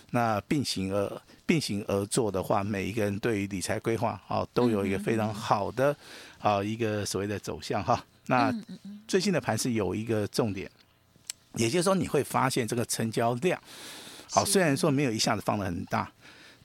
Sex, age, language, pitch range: male, 50-69, Chinese, 105-145 Hz